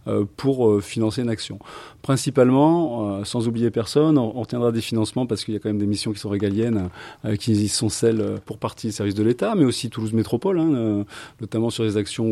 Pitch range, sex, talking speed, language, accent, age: 105-115 Hz, male, 195 wpm, French, French, 30-49